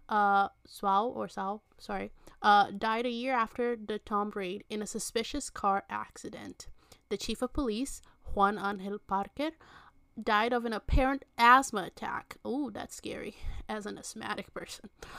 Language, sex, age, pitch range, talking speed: English, female, 20-39, 200-250 Hz, 150 wpm